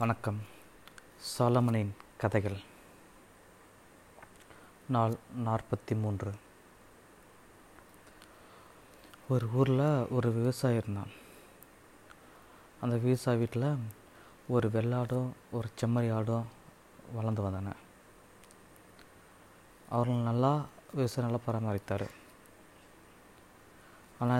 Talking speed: 65 wpm